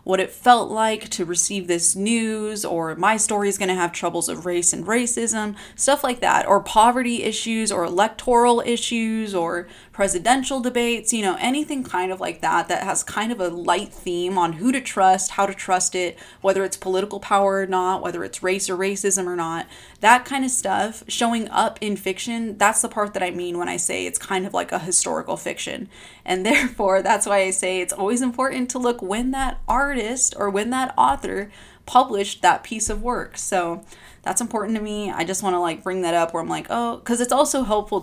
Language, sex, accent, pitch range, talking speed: English, female, American, 180-225 Hz, 215 wpm